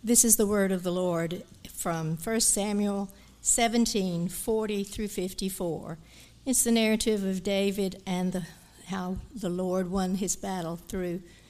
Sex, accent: female, American